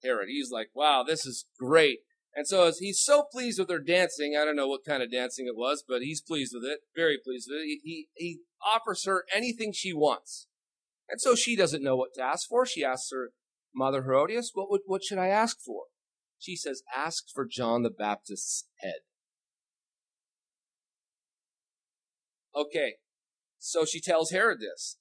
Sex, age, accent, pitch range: male, 40-59, American, 135-195 Hz